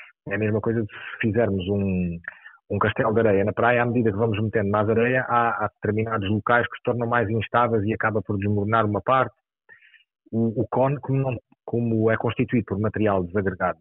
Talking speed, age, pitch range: 200 wpm, 30-49, 100-120 Hz